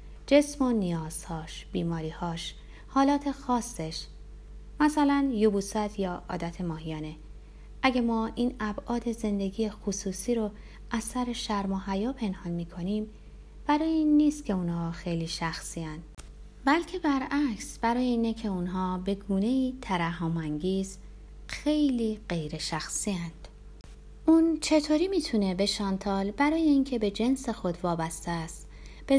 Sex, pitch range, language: female, 170-245 Hz, Persian